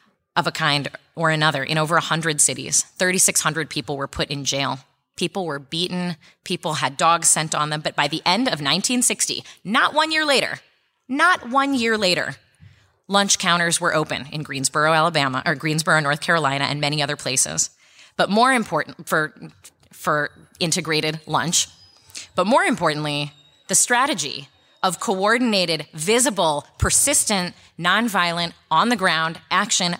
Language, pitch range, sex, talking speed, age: English, 145-175 Hz, female, 150 wpm, 20-39